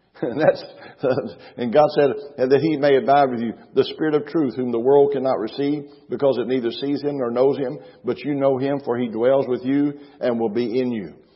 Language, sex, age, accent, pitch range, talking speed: English, male, 60-79, American, 120-145 Hz, 225 wpm